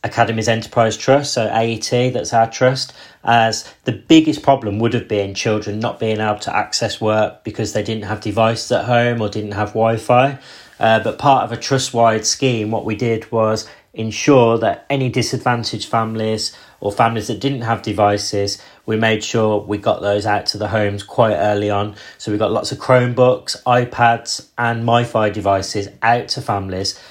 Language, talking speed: English, 180 wpm